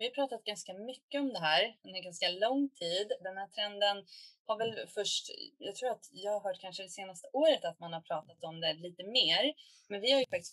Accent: native